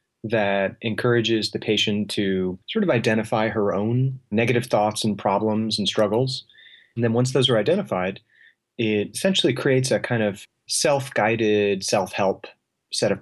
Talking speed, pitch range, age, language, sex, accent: 145 wpm, 100-125 Hz, 30-49, English, male, American